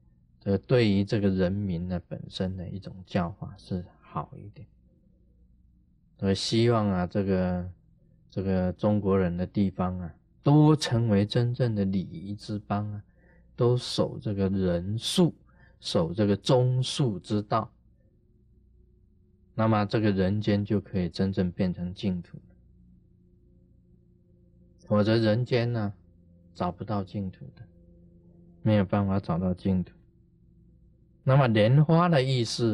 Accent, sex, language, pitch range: native, male, Chinese, 85-125 Hz